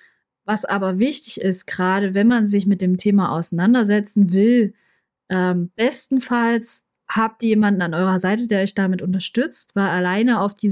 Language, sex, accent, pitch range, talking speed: German, female, German, 195-230 Hz, 160 wpm